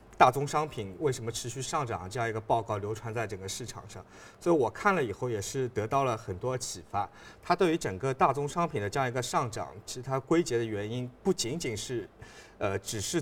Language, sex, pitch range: Chinese, male, 110-140 Hz